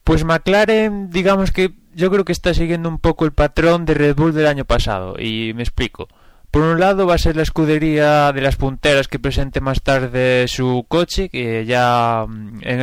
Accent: Spanish